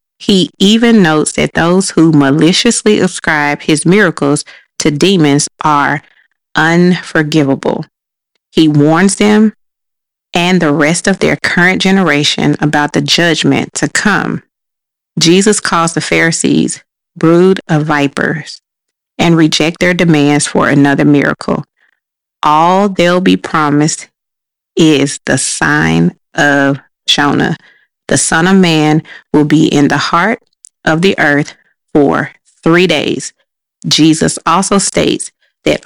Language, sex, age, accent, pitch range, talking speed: English, female, 30-49, American, 150-185 Hz, 120 wpm